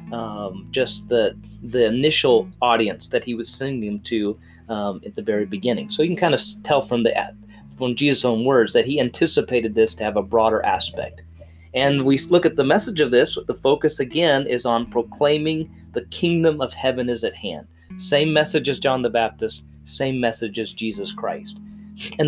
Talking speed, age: 190 wpm, 30-49